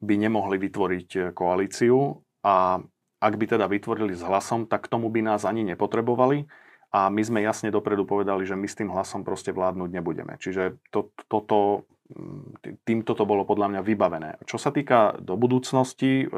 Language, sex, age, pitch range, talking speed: Slovak, male, 30-49, 95-115 Hz, 170 wpm